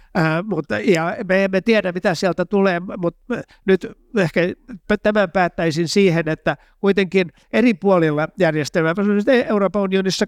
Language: Finnish